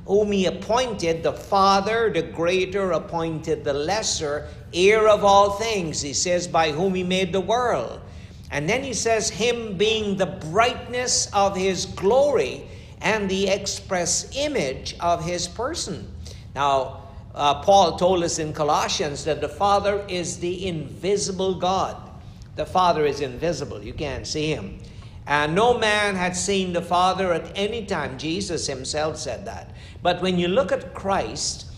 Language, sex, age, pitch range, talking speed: English, male, 60-79, 155-200 Hz, 155 wpm